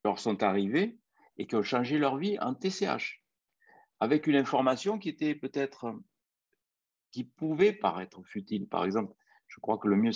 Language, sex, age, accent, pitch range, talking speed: French, male, 60-79, French, 105-150 Hz, 165 wpm